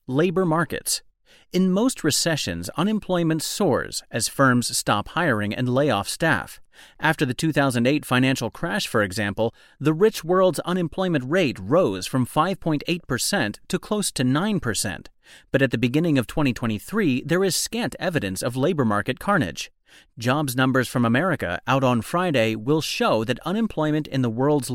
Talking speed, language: 150 wpm, English